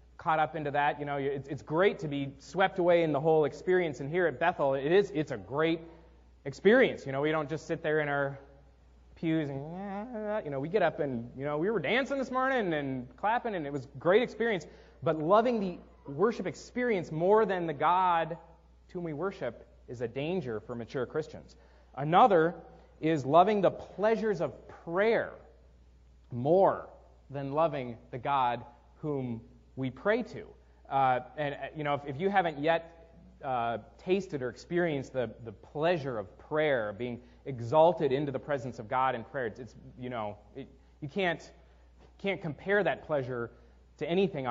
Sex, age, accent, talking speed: male, 30-49, American, 180 wpm